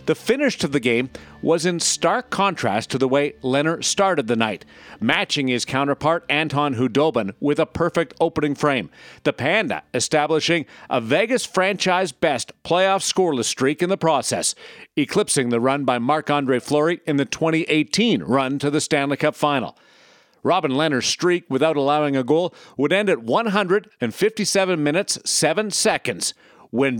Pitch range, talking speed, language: 135-175 Hz, 150 wpm, English